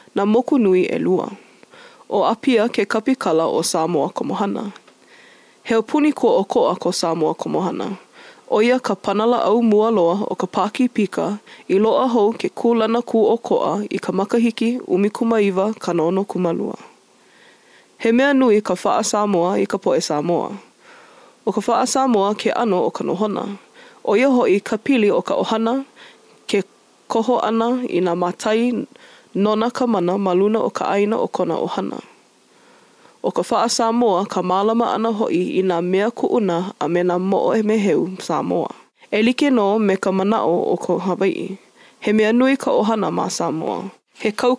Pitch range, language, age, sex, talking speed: 195-245 Hz, English, 20-39, female, 150 wpm